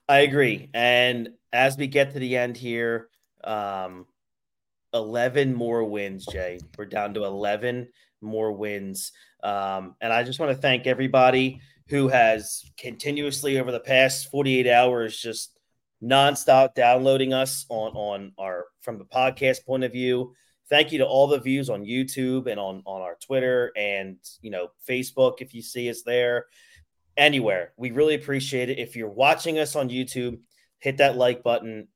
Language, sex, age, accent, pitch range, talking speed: English, male, 30-49, American, 110-135 Hz, 165 wpm